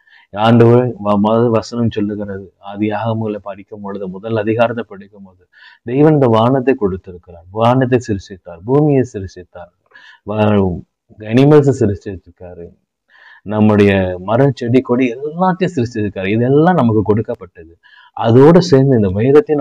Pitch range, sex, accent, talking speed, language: 95-120 Hz, male, native, 105 wpm, Tamil